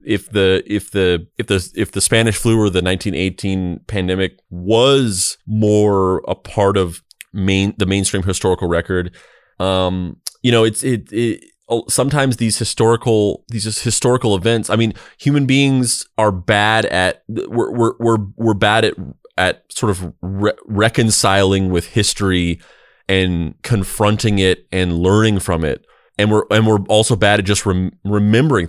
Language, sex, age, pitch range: English, male, 30-49, 95-110 Hz